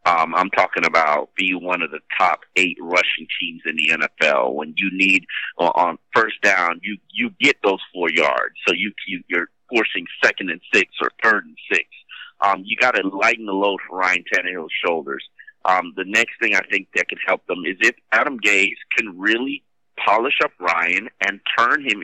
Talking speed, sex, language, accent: 200 wpm, male, English, American